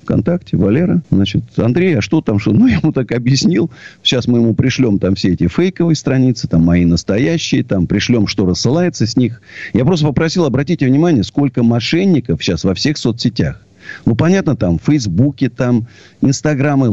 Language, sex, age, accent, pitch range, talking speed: Russian, male, 50-69, native, 100-150 Hz, 165 wpm